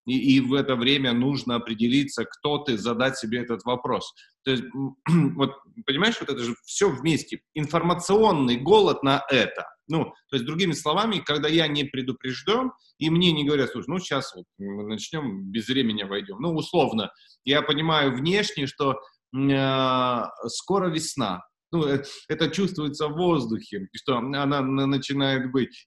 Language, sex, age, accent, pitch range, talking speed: Russian, male, 30-49, native, 125-170 Hz, 150 wpm